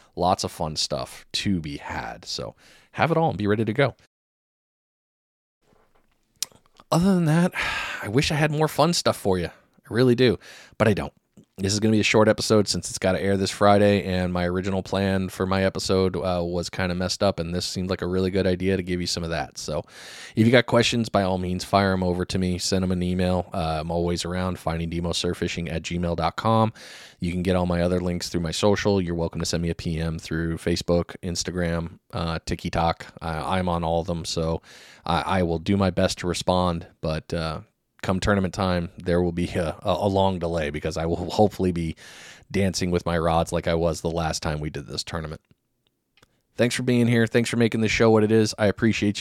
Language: English